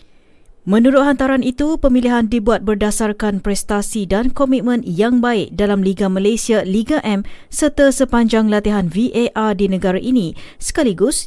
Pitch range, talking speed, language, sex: 205-255 Hz, 130 wpm, Malay, female